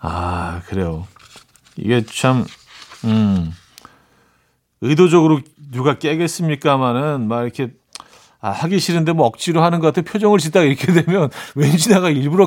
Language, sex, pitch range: Korean, male, 120-165 Hz